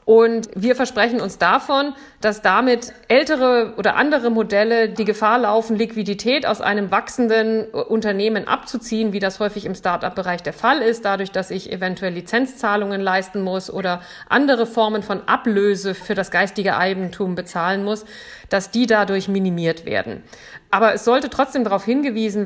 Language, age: German, 50-69